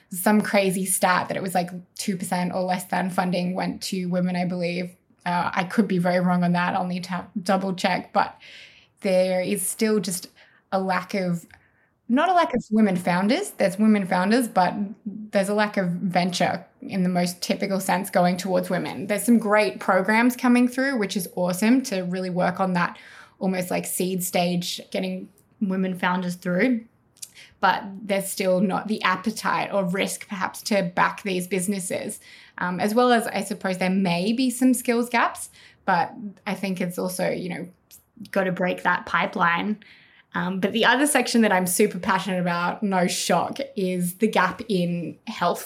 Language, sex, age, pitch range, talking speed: English, female, 20-39, 180-215 Hz, 180 wpm